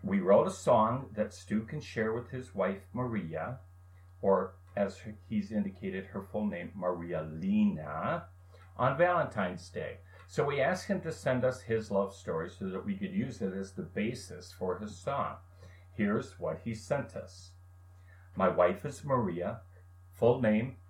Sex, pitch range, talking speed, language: male, 90-115 Hz, 165 wpm, English